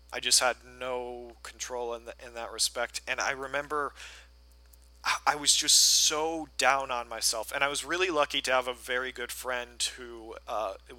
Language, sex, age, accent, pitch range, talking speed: English, male, 40-59, American, 115-135 Hz, 180 wpm